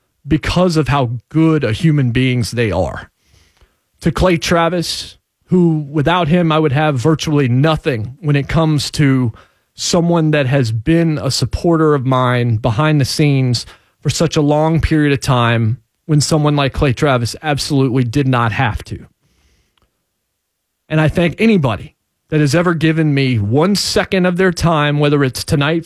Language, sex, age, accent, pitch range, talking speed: English, male, 30-49, American, 125-165 Hz, 160 wpm